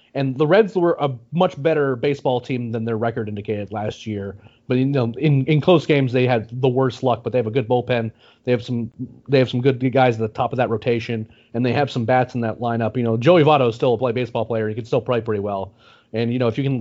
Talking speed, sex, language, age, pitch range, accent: 280 wpm, male, English, 30-49, 115-145 Hz, American